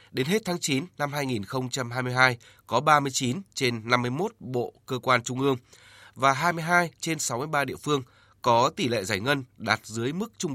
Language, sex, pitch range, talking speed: Vietnamese, male, 110-145 Hz, 170 wpm